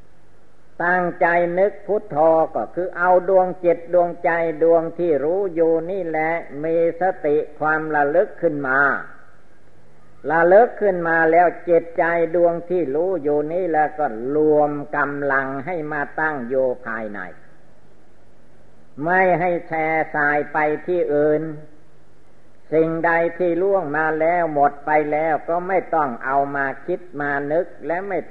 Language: Thai